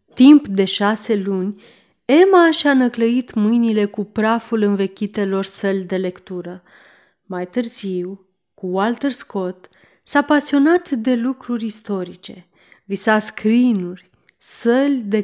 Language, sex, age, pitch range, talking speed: Romanian, female, 30-49, 195-240 Hz, 110 wpm